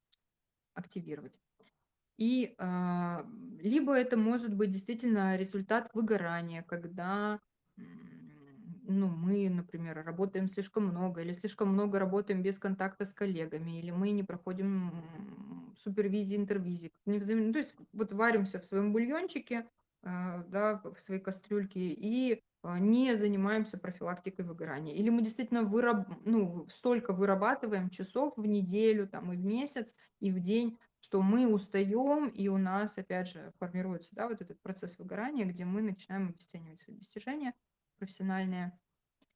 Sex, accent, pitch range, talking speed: female, native, 175-215 Hz, 125 wpm